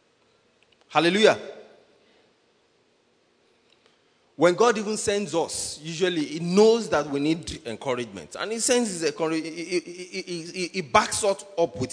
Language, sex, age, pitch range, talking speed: English, male, 30-49, 140-195 Hz, 115 wpm